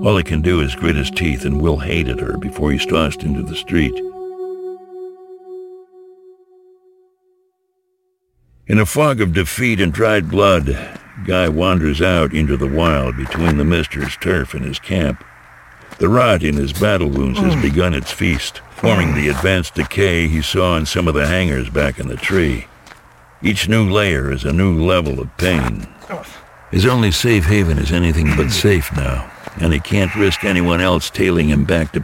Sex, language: male, English